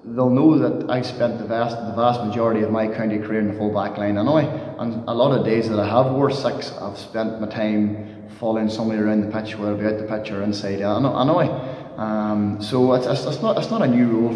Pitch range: 110-120 Hz